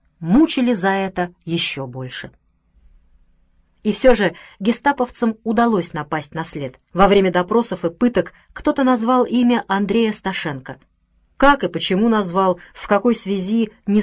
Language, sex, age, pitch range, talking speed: Russian, female, 30-49, 170-240 Hz, 135 wpm